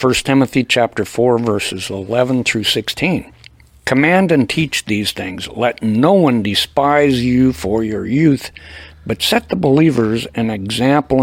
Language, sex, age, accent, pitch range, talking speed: English, male, 60-79, American, 110-145 Hz, 140 wpm